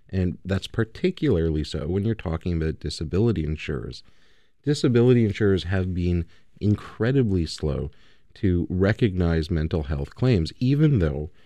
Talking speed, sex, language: 120 wpm, male, English